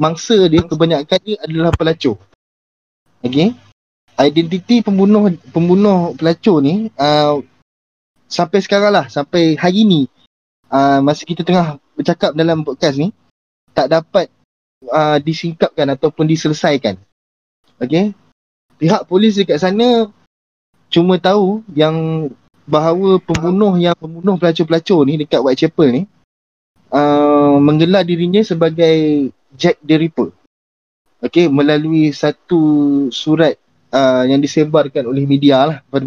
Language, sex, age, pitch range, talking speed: Malay, male, 20-39, 130-170 Hz, 115 wpm